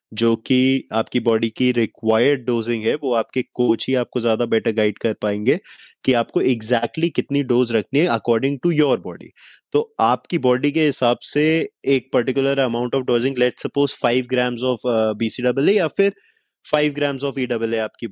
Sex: male